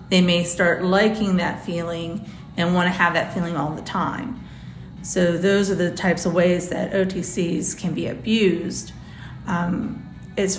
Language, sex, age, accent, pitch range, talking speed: English, female, 40-59, American, 175-195 Hz, 160 wpm